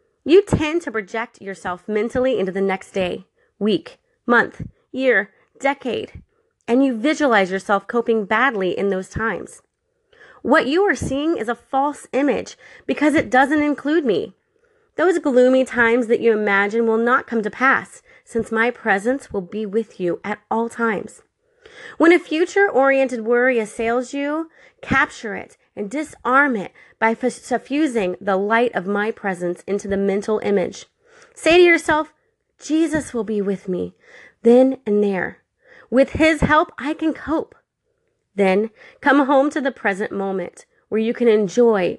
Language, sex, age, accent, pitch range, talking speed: English, female, 30-49, American, 200-305 Hz, 155 wpm